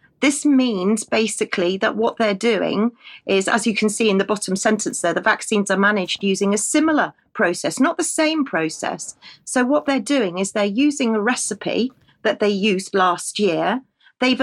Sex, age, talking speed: female, 40-59, 185 wpm